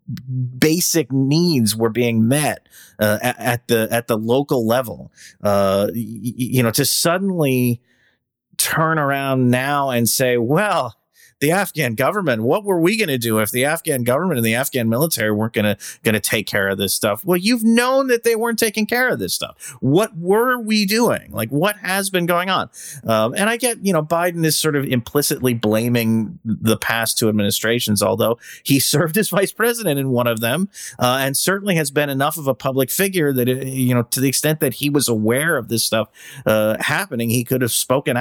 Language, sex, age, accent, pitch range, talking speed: English, male, 30-49, American, 115-165 Hz, 200 wpm